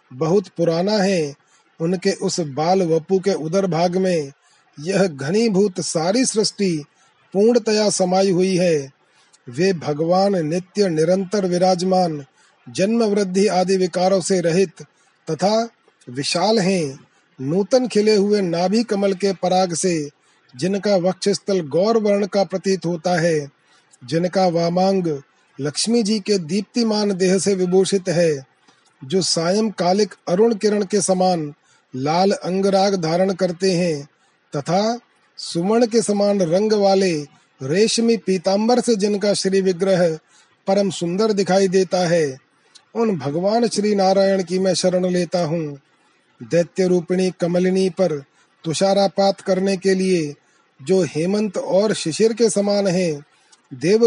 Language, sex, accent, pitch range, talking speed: Hindi, male, native, 170-200 Hz, 125 wpm